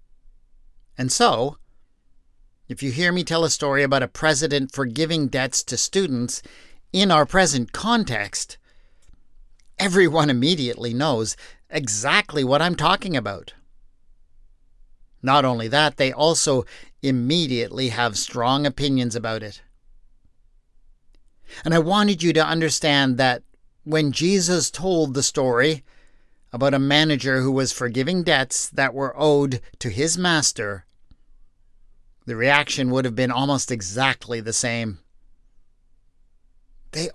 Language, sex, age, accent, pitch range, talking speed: English, male, 50-69, American, 120-155 Hz, 120 wpm